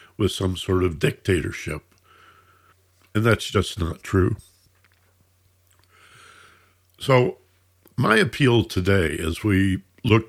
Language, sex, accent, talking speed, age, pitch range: English, male, American, 100 wpm, 60-79, 85-100 Hz